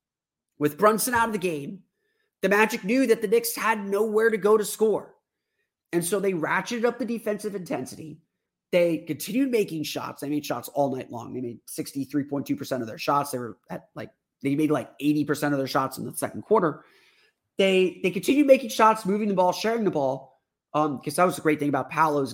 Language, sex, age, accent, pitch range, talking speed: English, male, 30-49, American, 150-215 Hz, 205 wpm